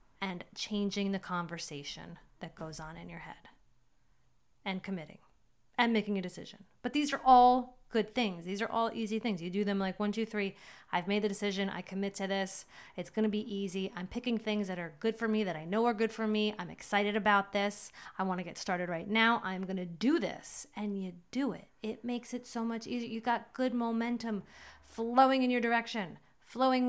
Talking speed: 215 wpm